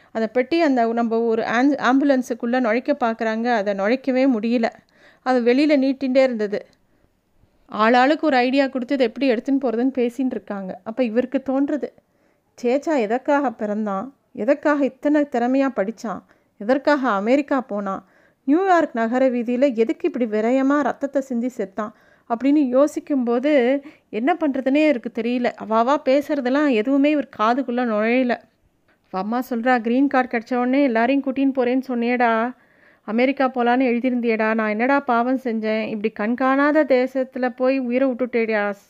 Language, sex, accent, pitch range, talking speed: Tamil, female, native, 230-275 Hz, 125 wpm